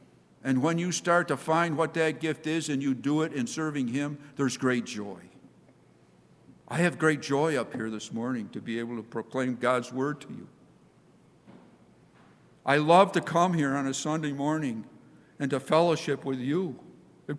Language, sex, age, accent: English, male, 50-69, American